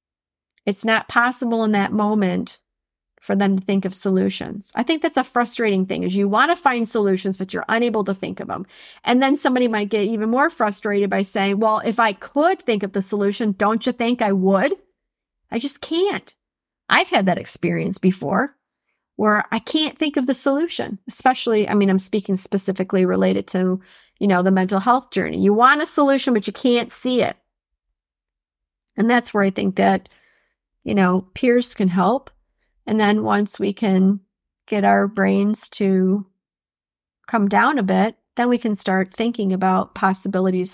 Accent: American